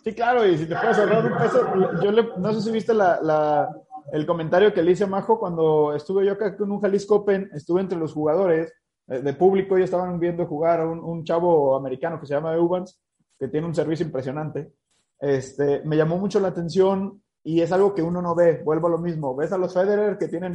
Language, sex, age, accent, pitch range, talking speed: Spanish, male, 30-49, Mexican, 165-210 Hz, 220 wpm